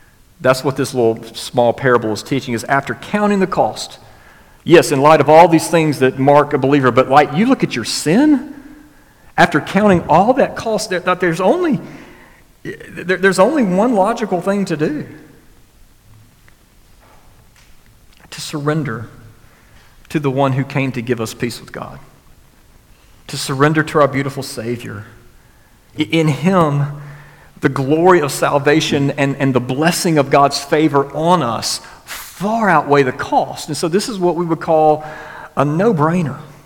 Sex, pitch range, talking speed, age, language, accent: male, 120-160 Hz, 150 wpm, 40-59, English, American